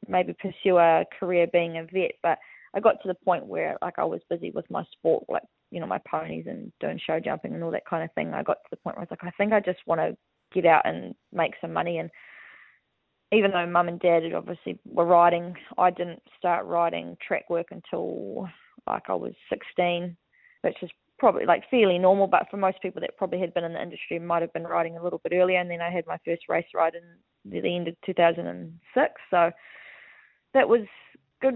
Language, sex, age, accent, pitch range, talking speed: English, female, 20-39, Australian, 170-195 Hz, 225 wpm